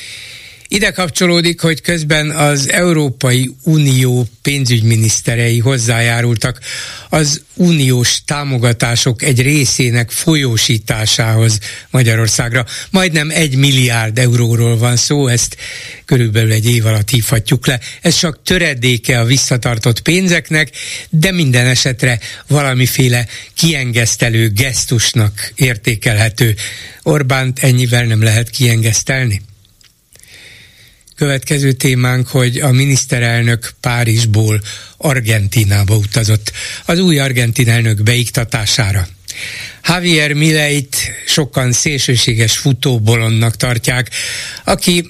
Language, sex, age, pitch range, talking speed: Hungarian, male, 60-79, 115-140 Hz, 90 wpm